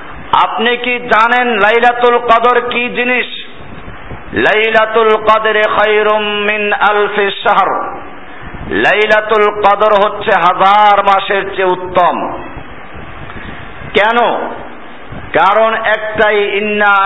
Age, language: 50-69, Bengali